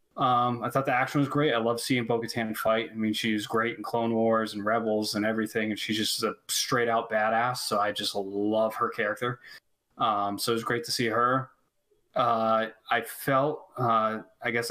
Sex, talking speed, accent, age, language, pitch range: male, 200 wpm, American, 20-39, English, 110-130 Hz